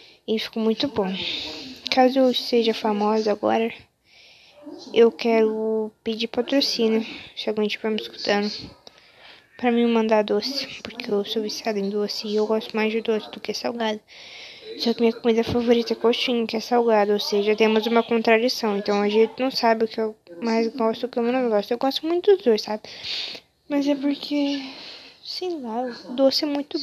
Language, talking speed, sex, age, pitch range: Portuguese, 180 wpm, female, 20-39, 220-260 Hz